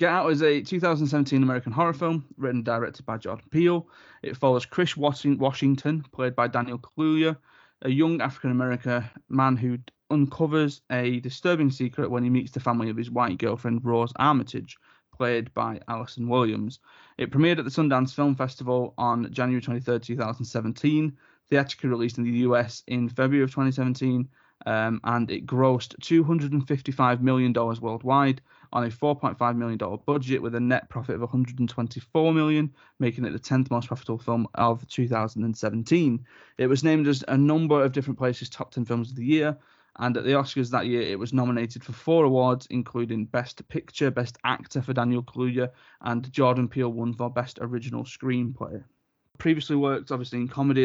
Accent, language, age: British, English, 30-49